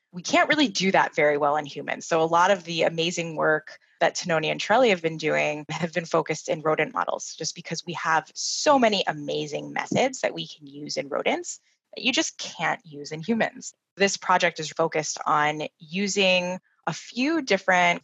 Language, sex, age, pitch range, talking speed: English, female, 20-39, 160-205 Hz, 195 wpm